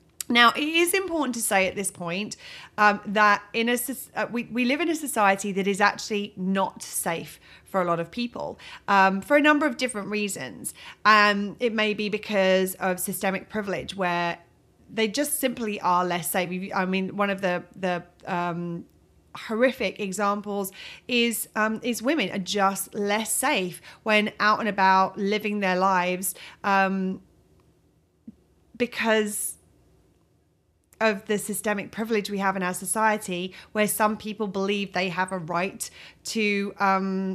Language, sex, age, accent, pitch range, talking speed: English, female, 30-49, British, 185-215 Hz, 155 wpm